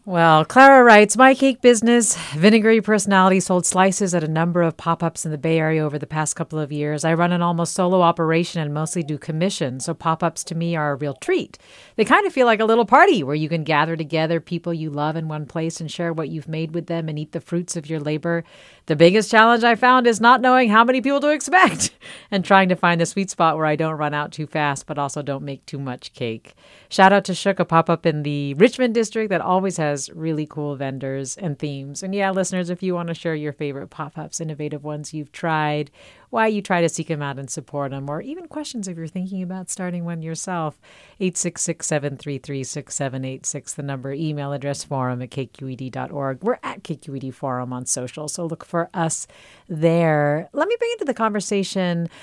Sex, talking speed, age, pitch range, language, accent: female, 215 wpm, 40-59, 150-190 Hz, English, American